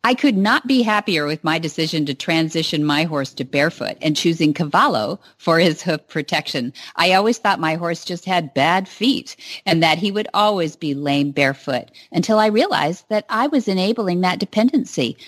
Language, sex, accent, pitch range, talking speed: English, female, American, 160-225 Hz, 185 wpm